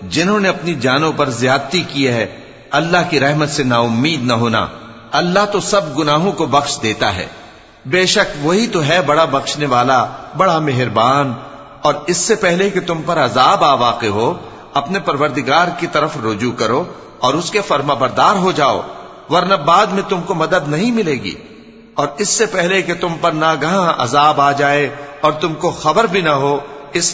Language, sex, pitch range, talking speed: English, male, 135-175 Hz, 120 wpm